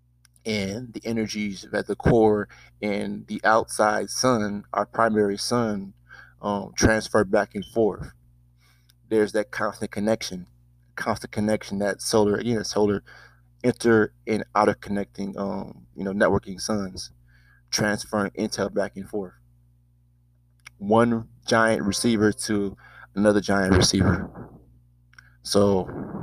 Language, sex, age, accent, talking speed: English, male, 20-39, American, 120 wpm